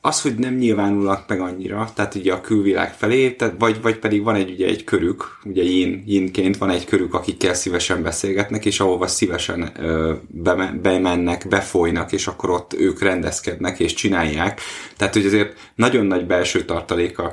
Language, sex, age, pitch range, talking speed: Hungarian, male, 20-39, 90-110 Hz, 170 wpm